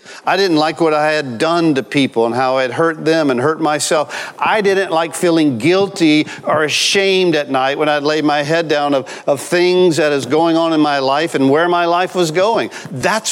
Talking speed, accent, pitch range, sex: 225 wpm, American, 135-175 Hz, male